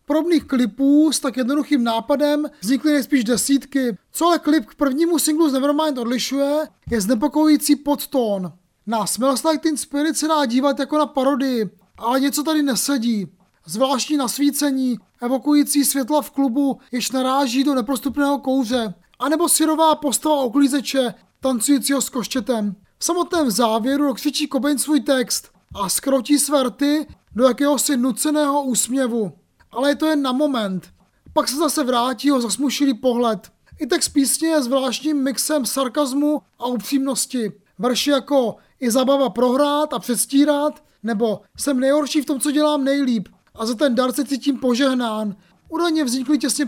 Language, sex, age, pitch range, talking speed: Czech, male, 20-39, 245-295 Hz, 145 wpm